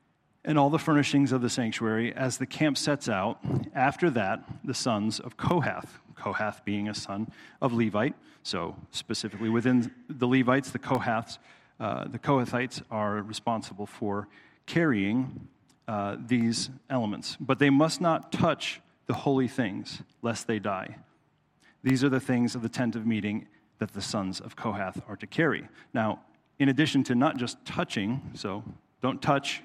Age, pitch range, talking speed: 40-59, 110-135 Hz, 160 wpm